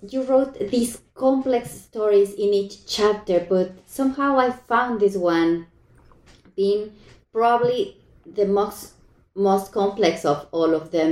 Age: 20-39